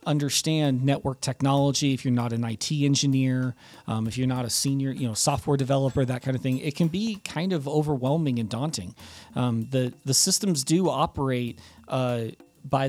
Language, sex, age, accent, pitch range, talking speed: English, male, 40-59, American, 125-145 Hz, 180 wpm